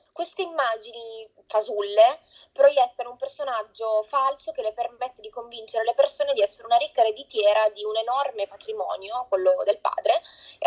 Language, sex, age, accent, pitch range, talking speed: Italian, female, 20-39, native, 210-285 Hz, 150 wpm